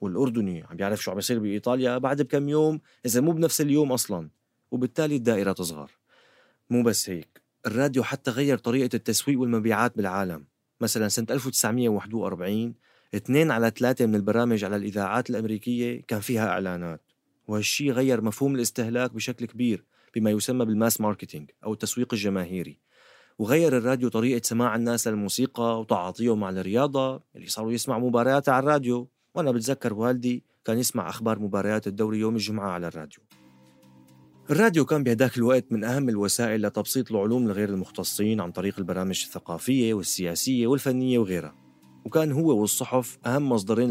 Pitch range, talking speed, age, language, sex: 100-125 Hz, 140 wpm, 30-49, Arabic, male